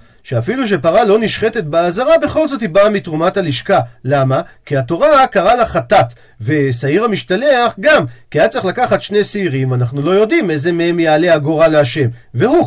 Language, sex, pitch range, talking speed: Hebrew, male, 140-225 Hz, 165 wpm